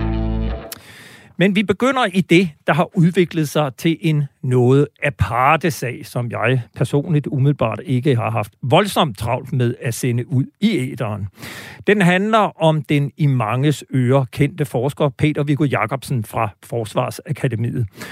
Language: Danish